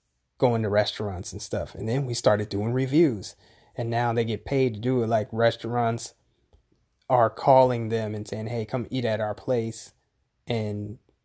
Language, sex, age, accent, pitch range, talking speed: English, male, 30-49, American, 115-135 Hz, 175 wpm